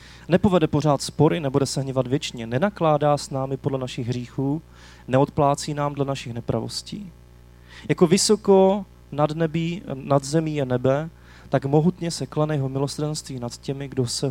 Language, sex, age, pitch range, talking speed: Czech, male, 30-49, 115-150 Hz, 150 wpm